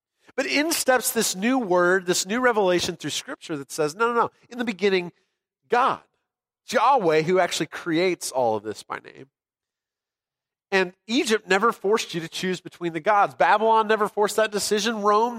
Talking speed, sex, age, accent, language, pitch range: 175 wpm, male, 40-59, American, English, 160-215 Hz